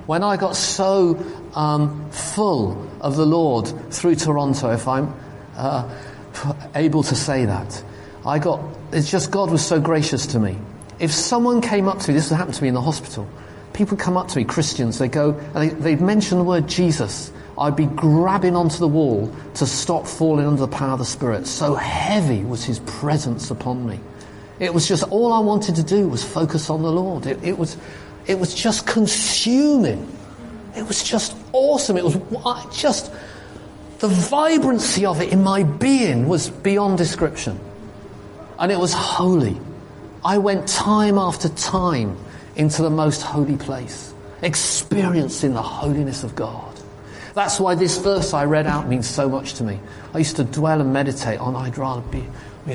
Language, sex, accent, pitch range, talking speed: English, male, British, 125-180 Hz, 180 wpm